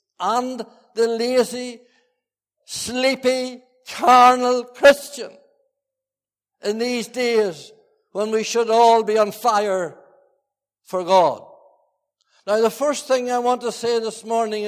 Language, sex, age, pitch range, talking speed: English, male, 60-79, 220-265 Hz, 115 wpm